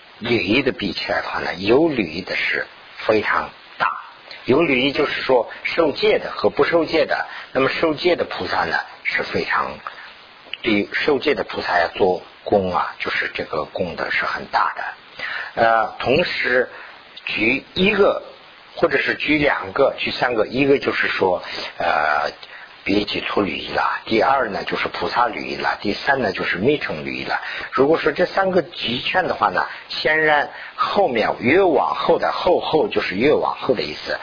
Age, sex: 50-69, male